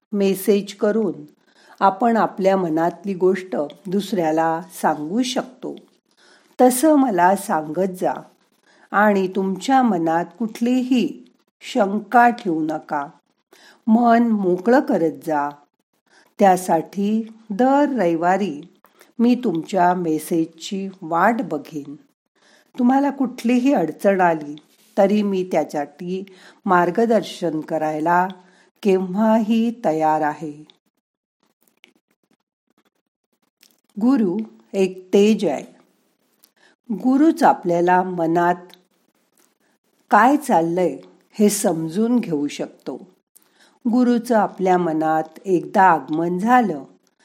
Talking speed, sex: 80 wpm, female